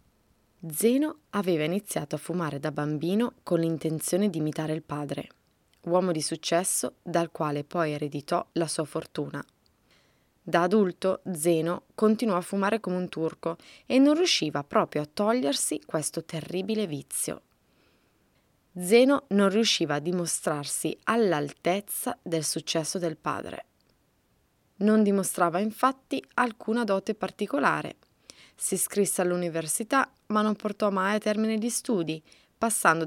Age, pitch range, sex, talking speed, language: 20-39, 165-220 Hz, female, 125 wpm, Italian